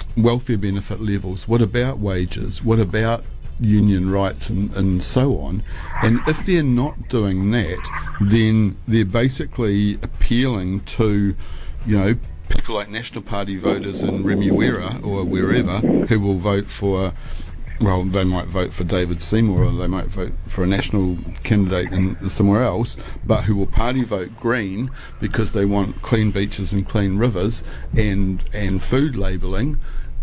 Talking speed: 150 wpm